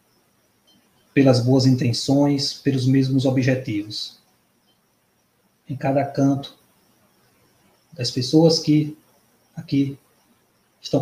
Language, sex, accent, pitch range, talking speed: Portuguese, male, Brazilian, 125-140 Hz, 75 wpm